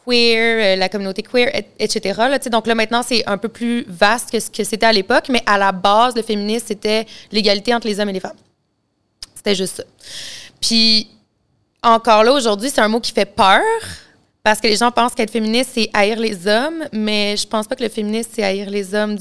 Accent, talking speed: Canadian, 220 wpm